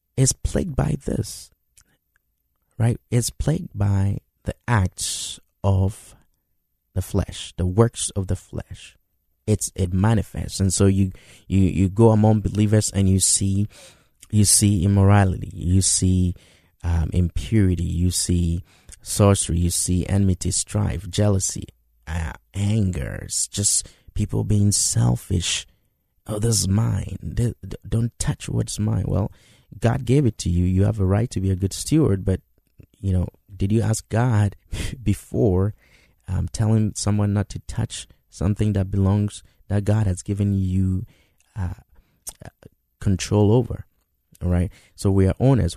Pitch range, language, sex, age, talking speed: 90-105 Hz, English, male, 30-49, 140 wpm